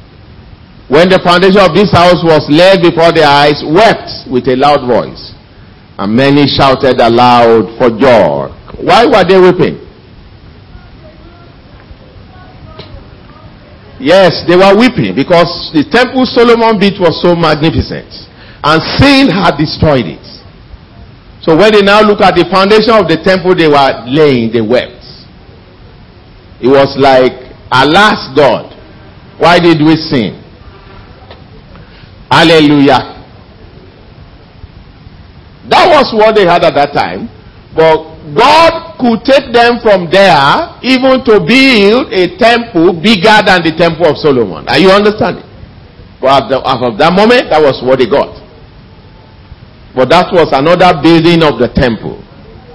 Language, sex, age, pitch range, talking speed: English, male, 50-69, 120-195 Hz, 130 wpm